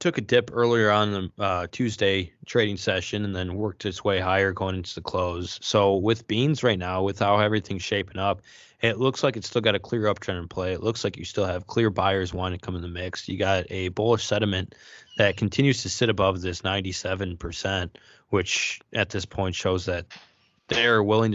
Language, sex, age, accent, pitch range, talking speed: English, male, 20-39, American, 90-115 Hz, 210 wpm